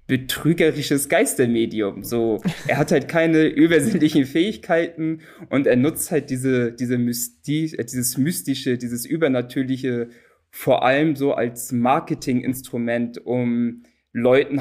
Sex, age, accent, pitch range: male, 20-39, German, 120-140 Hz